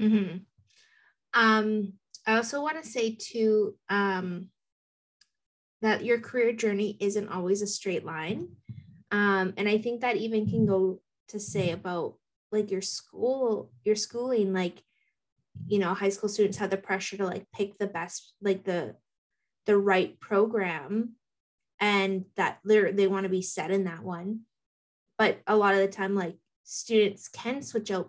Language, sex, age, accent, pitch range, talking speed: English, female, 20-39, American, 190-215 Hz, 160 wpm